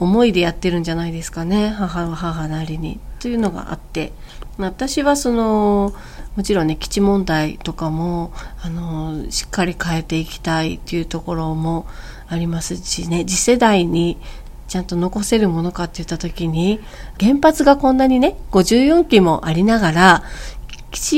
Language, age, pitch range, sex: Japanese, 40-59, 170-230 Hz, female